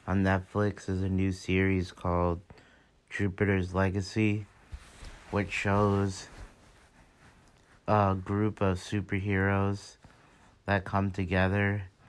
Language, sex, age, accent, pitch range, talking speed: English, male, 30-49, American, 90-100 Hz, 90 wpm